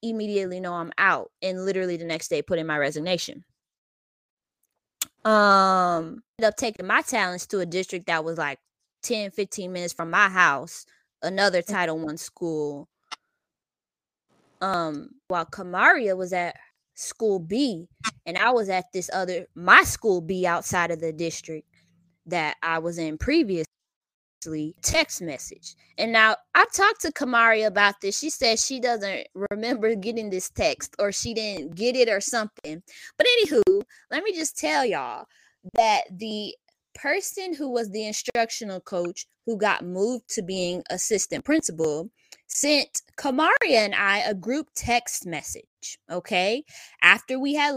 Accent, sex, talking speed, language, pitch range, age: American, female, 150 wpm, English, 175-245 Hz, 20-39